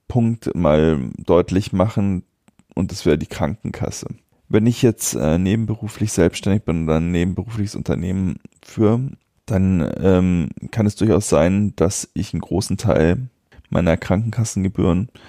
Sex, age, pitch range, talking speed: male, 20-39, 85-110 Hz, 135 wpm